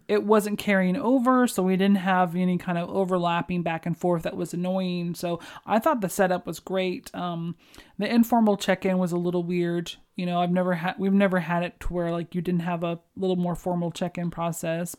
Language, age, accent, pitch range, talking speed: English, 30-49, American, 175-205 Hz, 215 wpm